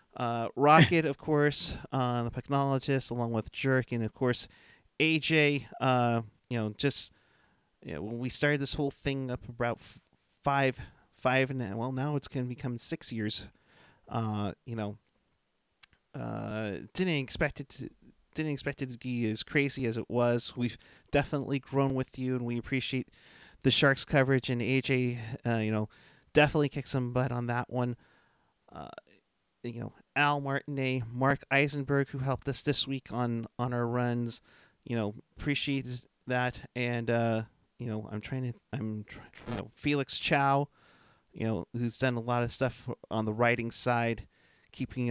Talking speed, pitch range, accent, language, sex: 165 wpm, 115-140 Hz, American, English, male